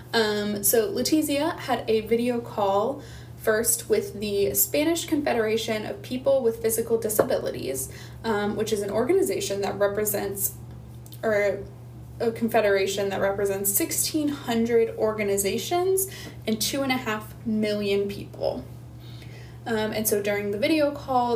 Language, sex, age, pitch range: English, female, 10-29, 200-235 Hz